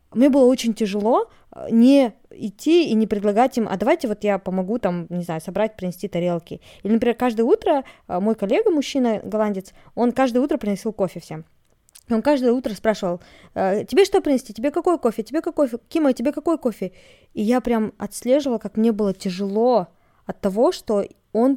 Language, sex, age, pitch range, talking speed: Russian, female, 20-39, 195-250 Hz, 175 wpm